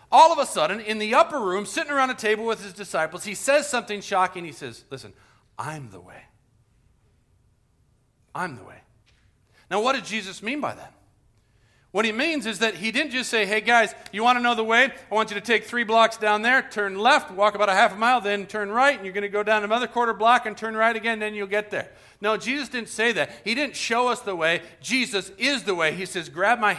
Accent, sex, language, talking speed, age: American, male, English, 240 wpm, 40-59